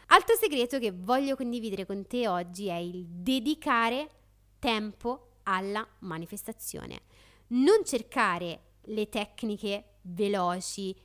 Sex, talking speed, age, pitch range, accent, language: female, 105 wpm, 30-49, 190-245 Hz, native, Italian